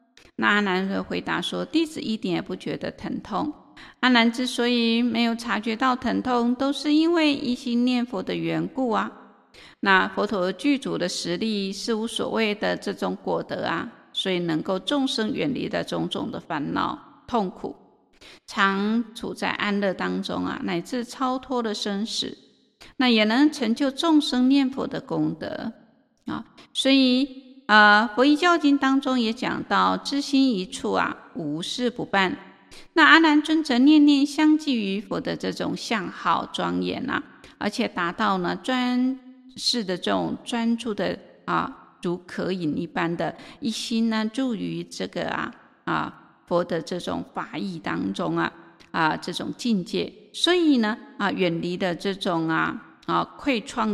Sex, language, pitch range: female, Chinese, 195-265 Hz